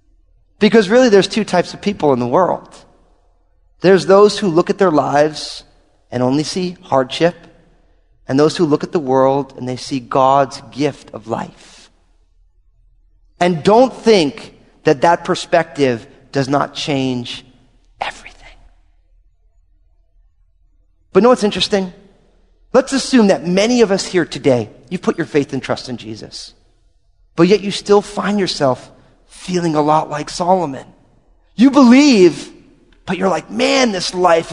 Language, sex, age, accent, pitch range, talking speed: English, male, 30-49, American, 130-210 Hz, 145 wpm